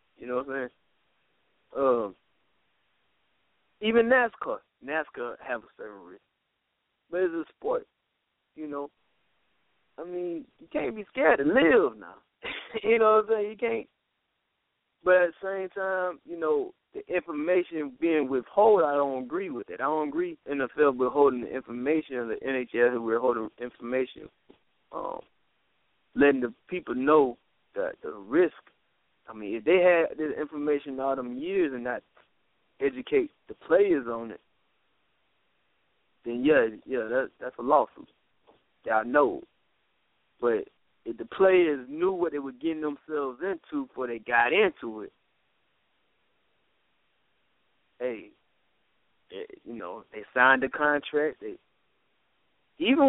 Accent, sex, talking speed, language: American, male, 145 wpm, English